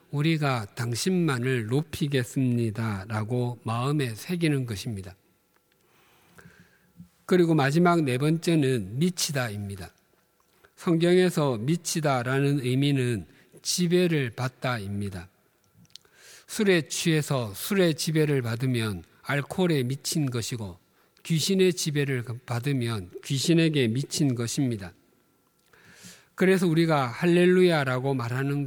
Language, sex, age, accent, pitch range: Korean, male, 50-69, native, 120-160 Hz